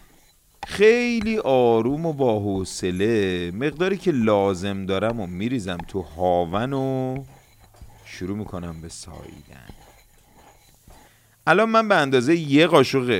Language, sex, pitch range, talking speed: Persian, male, 95-145 Hz, 110 wpm